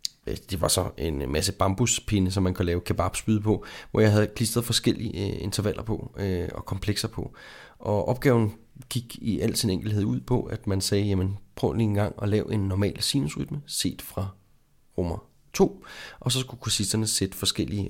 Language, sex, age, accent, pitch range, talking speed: Danish, male, 30-49, native, 100-130 Hz, 190 wpm